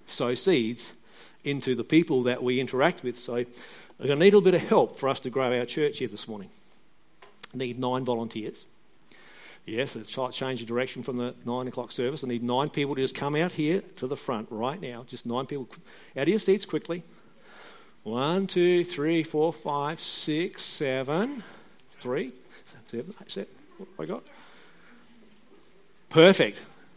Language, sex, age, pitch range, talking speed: English, male, 50-69, 125-155 Hz, 175 wpm